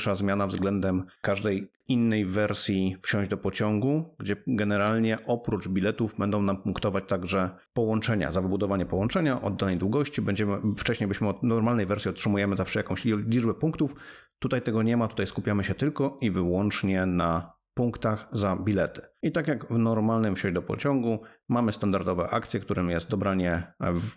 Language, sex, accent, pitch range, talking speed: Polish, male, native, 95-120 Hz, 155 wpm